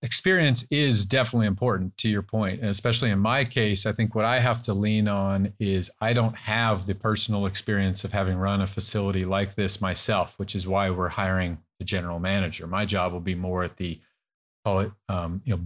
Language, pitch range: English, 100-115 Hz